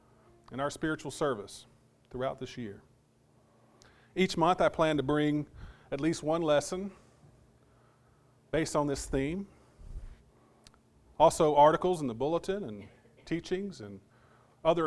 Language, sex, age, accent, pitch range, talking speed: English, male, 40-59, American, 120-160 Hz, 120 wpm